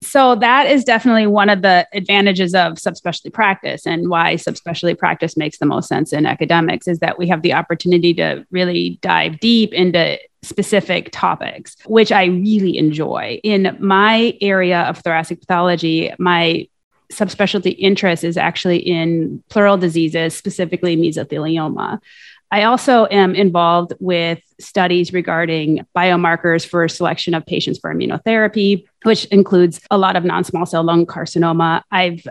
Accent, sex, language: American, female, English